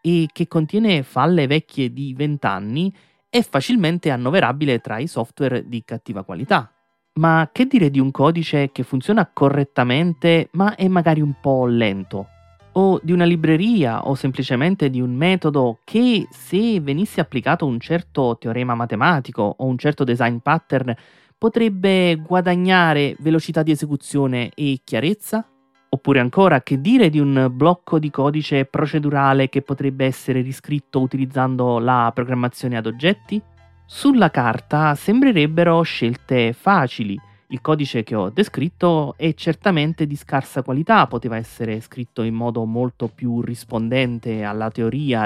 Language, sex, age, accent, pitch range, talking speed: Italian, male, 30-49, native, 125-170 Hz, 140 wpm